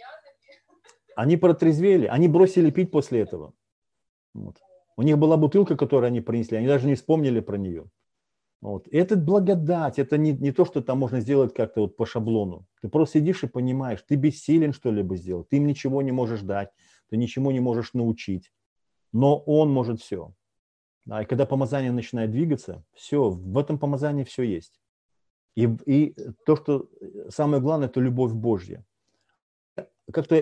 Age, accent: 40-59, native